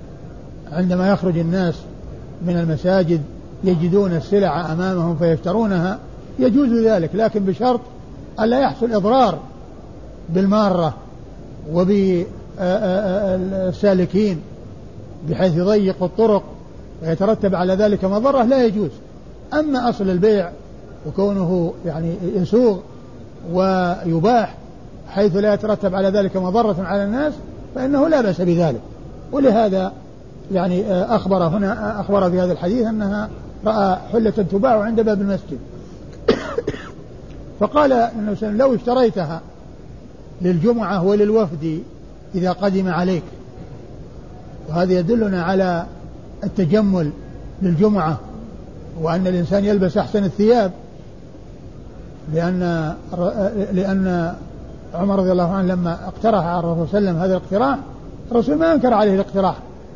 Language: Arabic